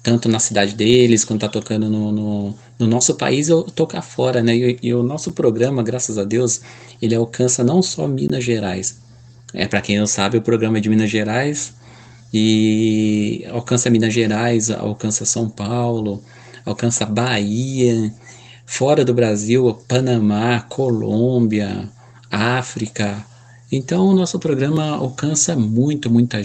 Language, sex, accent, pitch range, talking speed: Portuguese, male, Brazilian, 110-125 Hz, 145 wpm